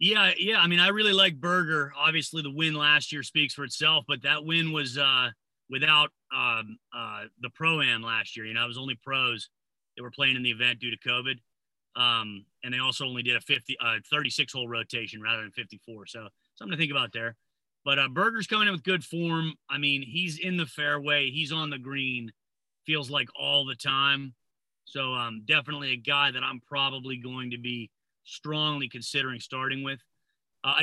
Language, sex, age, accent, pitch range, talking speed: English, male, 30-49, American, 125-165 Hz, 195 wpm